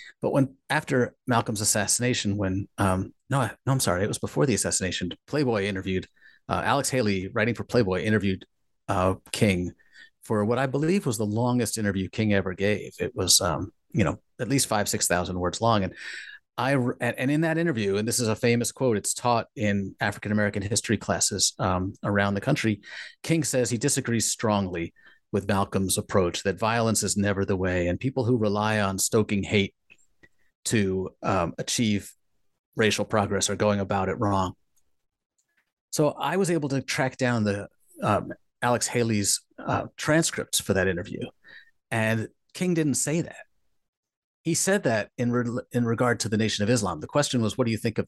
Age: 30-49